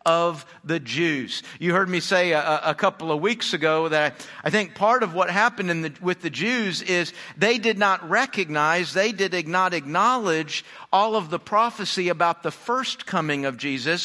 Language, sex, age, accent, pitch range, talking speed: English, male, 50-69, American, 170-230 Hz, 190 wpm